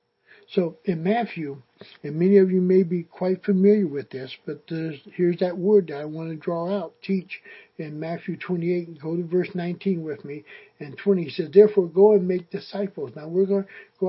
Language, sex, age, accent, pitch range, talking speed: English, male, 60-79, American, 165-195 Hz, 210 wpm